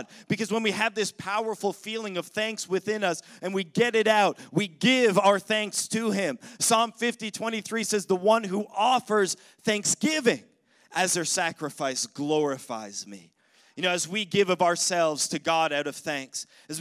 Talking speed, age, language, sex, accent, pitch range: 175 wpm, 30-49, English, male, American, 155-210 Hz